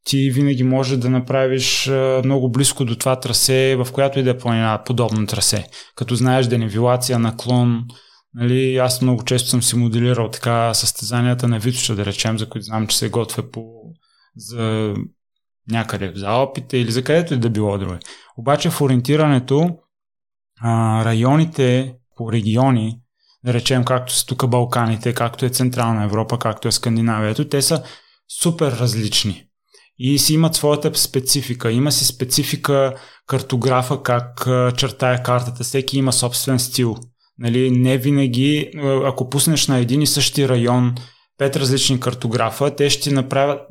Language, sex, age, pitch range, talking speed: Bulgarian, male, 20-39, 120-135 Hz, 155 wpm